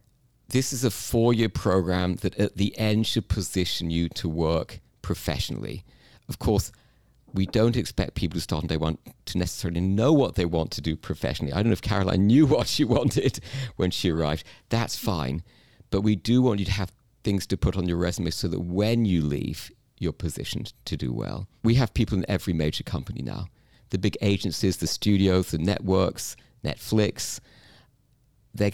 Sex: male